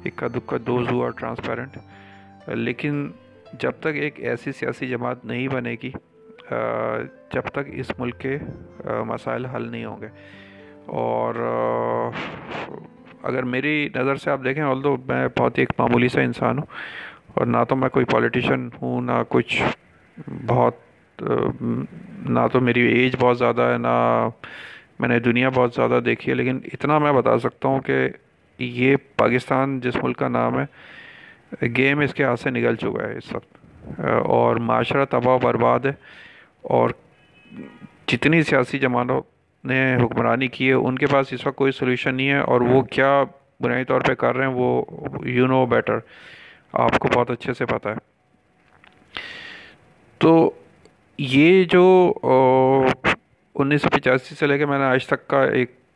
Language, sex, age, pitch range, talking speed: Urdu, male, 30-49, 120-140 Hz, 160 wpm